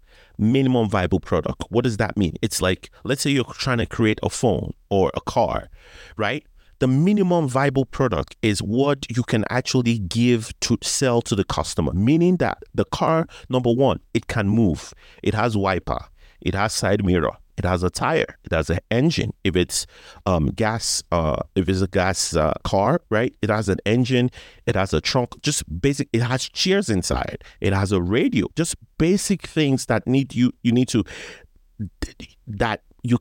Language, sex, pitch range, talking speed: English, male, 100-145 Hz, 185 wpm